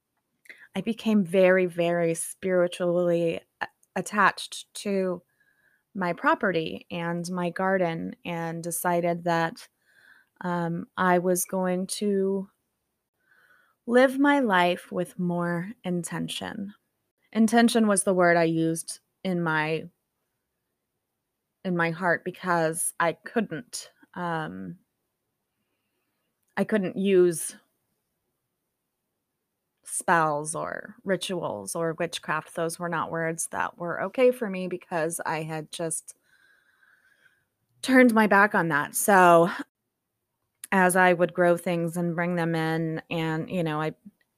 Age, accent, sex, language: 20-39, American, female, English